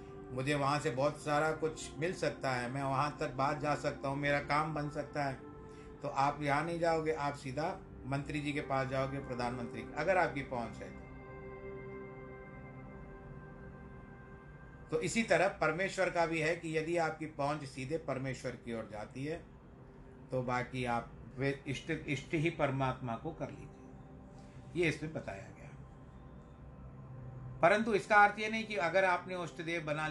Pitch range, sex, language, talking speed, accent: 120-155 Hz, male, Hindi, 160 wpm, native